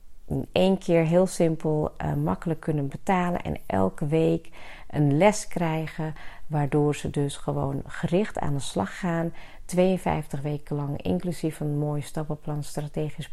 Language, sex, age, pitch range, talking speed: Dutch, female, 40-59, 140-165 Hz, 140 wpm